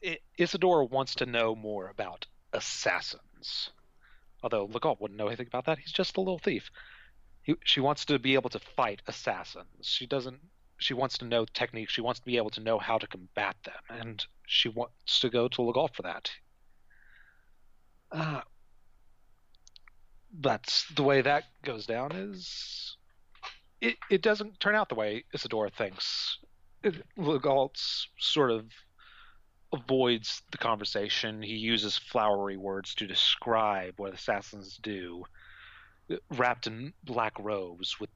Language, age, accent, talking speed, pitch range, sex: English, 30-49, American, 145 wpm, 105-135 Hz, male